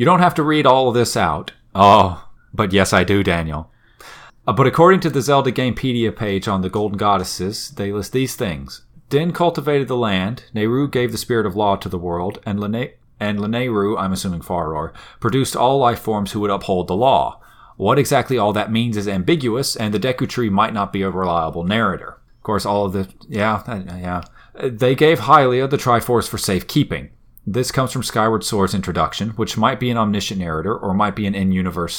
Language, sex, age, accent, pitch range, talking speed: English, male, 40-59, American, 95-125 Hz, 205 wpm